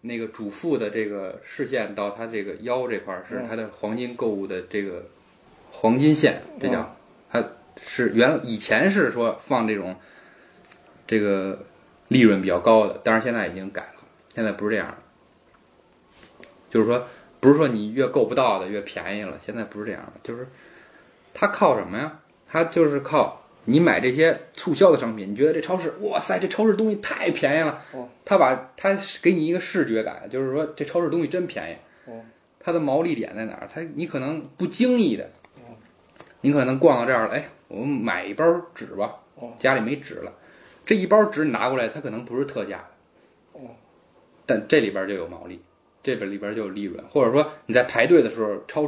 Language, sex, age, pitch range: Chinese, male, 20-39, 105-155 Hz